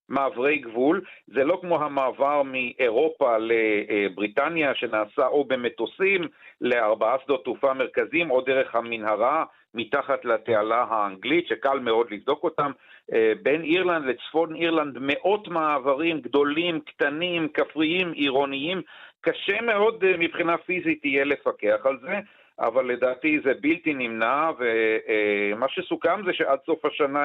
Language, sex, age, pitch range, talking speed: Hebrew, male, 50-69, 120-175 Hz, 120 wpm